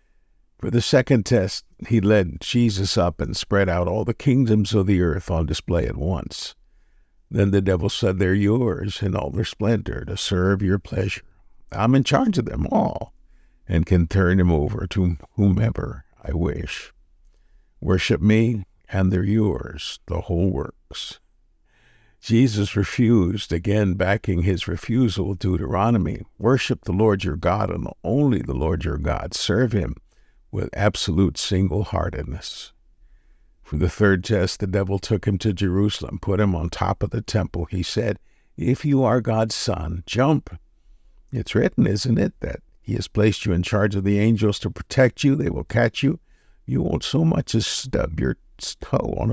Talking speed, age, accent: 165 wpm, 60-79, American